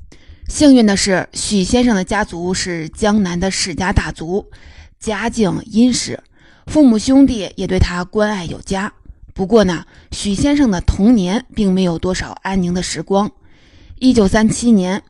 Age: 20-39